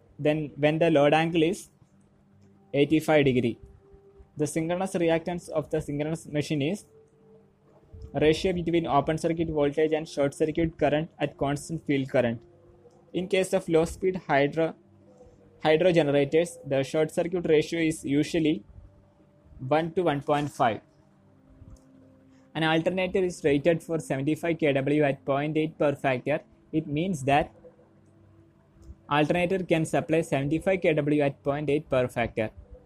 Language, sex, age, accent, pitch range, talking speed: Malayalam, male, 20-39, native, 135-165 Hz, 125 wpm